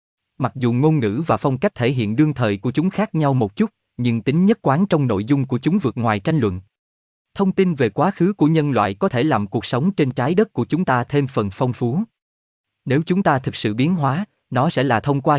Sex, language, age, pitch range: male, Vietnamese, 20-39, 110-160 Hz